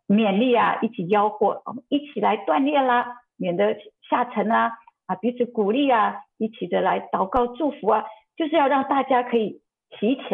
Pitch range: 205-270 Hz